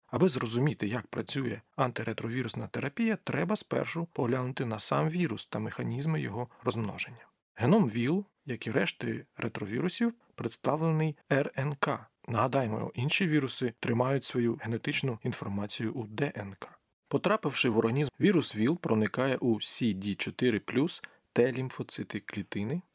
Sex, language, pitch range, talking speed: male, Ukrainian, 110-150 Hz, 110 wpm